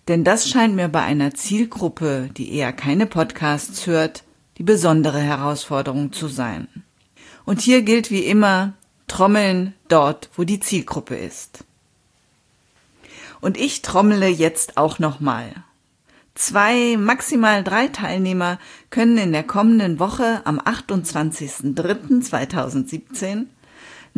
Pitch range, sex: 150-205 Hz, female